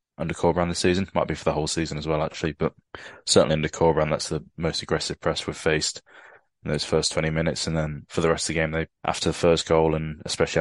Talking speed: 250 wpm